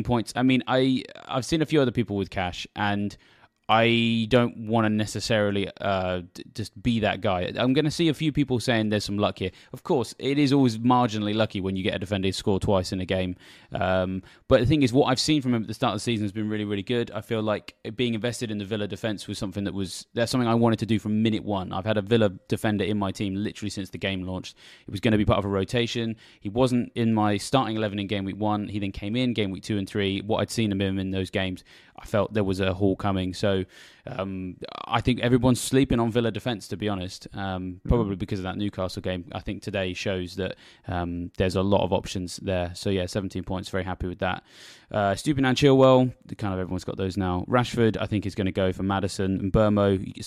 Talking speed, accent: 255 wpm, British